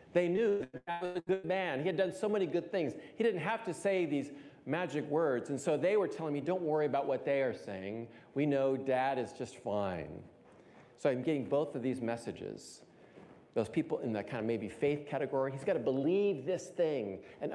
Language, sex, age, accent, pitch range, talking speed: English, male, 40-59, American, 115-145 Hz, 215 wpm